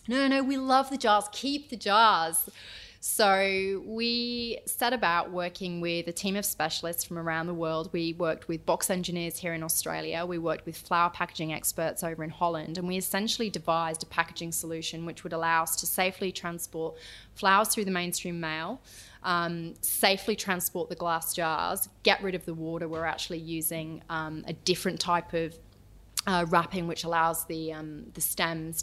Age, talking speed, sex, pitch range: 20-39, 180 wpm, female, 165-195 Hz